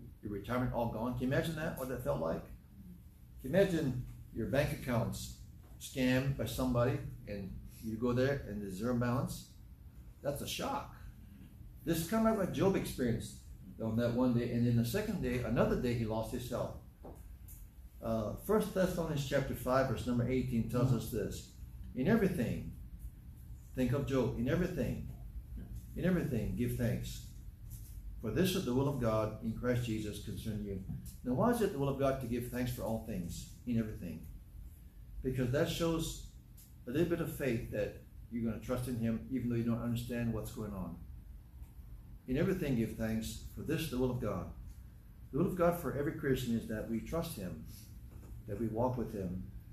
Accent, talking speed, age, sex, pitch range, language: American, 185 wpm, 60-79, male, 105-130 Hz, English